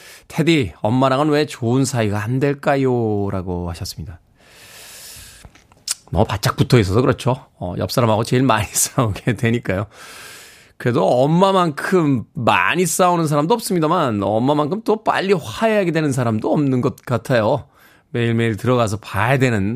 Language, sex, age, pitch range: Korean, male, 20-39, 105-140 Hz